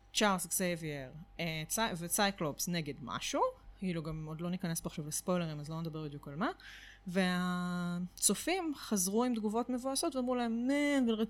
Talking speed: 150 wpm